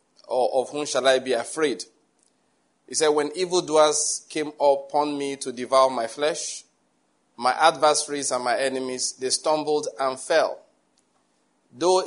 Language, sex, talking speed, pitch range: English, male, 140 wpm, 130-150 Hz